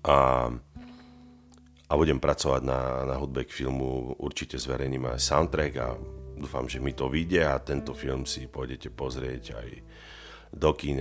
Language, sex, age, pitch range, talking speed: Slovak, male, 40-59, 65-80 Hz, 145 wpm